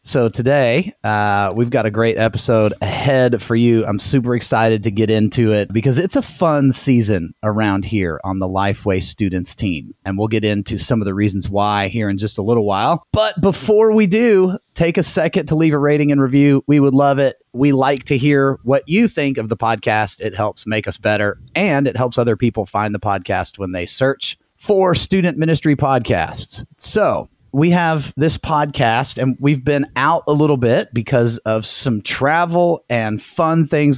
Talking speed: 195 wpm